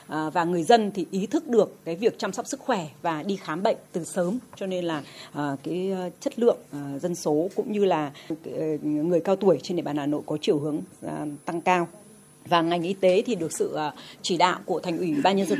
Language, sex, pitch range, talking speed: Vietnamese, female, 170-215 Hz, 225 wpm